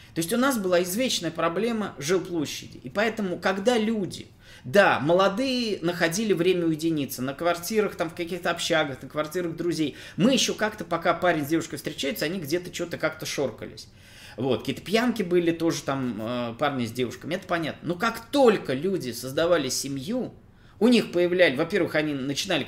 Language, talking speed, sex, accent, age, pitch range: Russian, 165 wpm, male, native, 20-39, 150-210 Hz